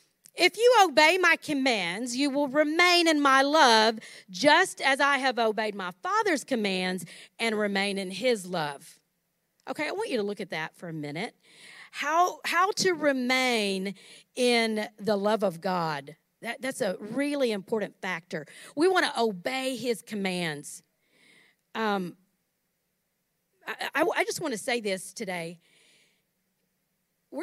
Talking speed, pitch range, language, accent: 145 wpm, 180-270 Hz, English, American